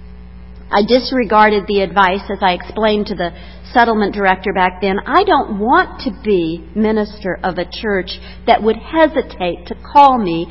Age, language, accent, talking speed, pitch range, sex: 50-69, English, American, 160 wpm, 185-280 Hz, female